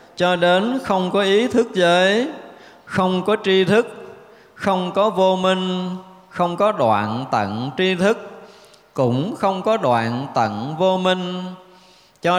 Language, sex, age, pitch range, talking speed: Vietnamese, male, 20-39, 130-195 Hz, 140 wpm